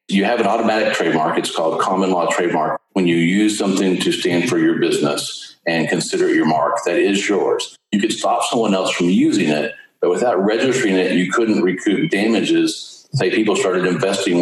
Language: English